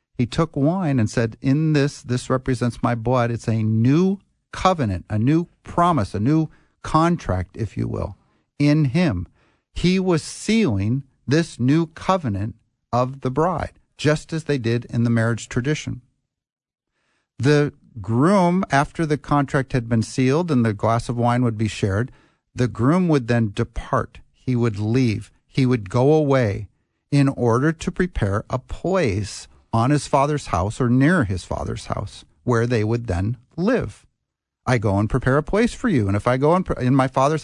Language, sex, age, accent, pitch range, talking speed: English, male, 50-69, American, 110-150 Hz, 175 wpm